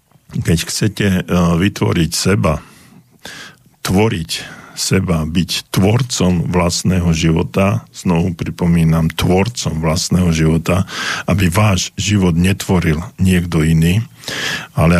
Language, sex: Slovak, male